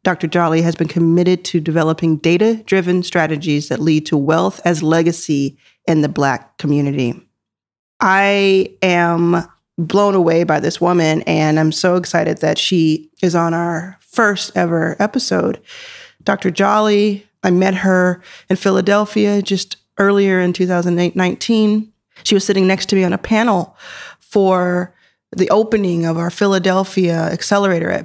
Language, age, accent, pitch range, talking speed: English, 30-49, American, 165-195 Hz, 140 wpm